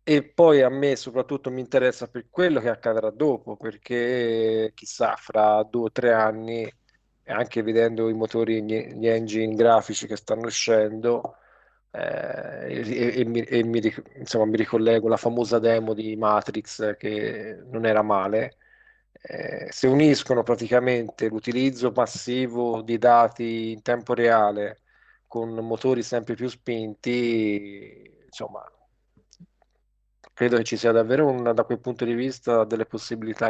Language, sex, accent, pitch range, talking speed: Italian, male, native, 110-125 Hz, 140 wpm